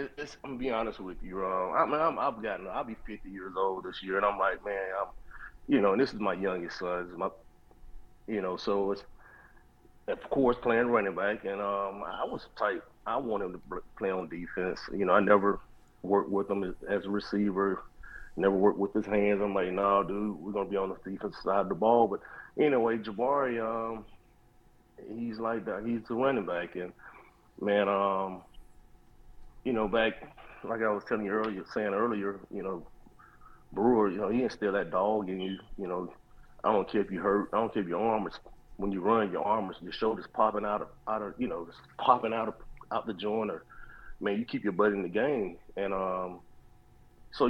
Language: English